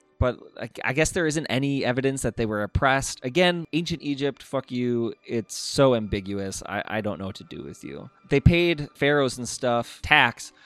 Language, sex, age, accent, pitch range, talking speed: English, male, 20-39, American, 105-135 Hz, 190 wpm